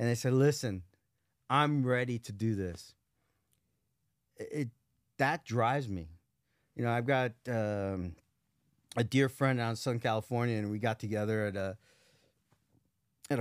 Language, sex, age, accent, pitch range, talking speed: English, male, 30-49, American, 110-140 Hz, 145 wpm